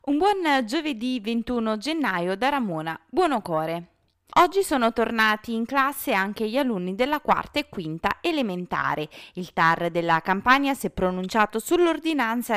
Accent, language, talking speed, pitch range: native, Italian, 145 wpm, 180-250 Hz